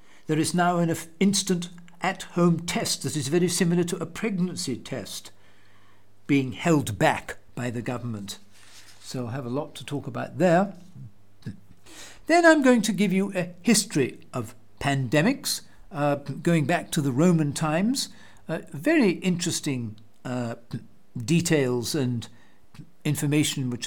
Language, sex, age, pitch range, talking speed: English, male, 60-79, 125-180 Hz, 140 wpm